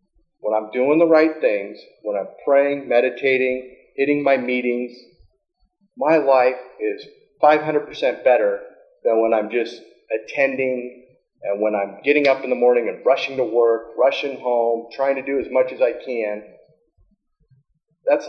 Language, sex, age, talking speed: English, male, 40-59, 150 wpm